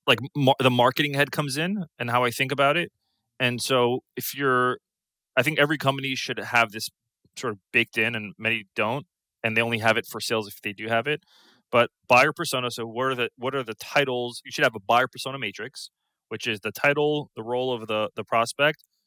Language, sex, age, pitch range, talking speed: English, male, 20-39, 110-130 Hz, 220 wpm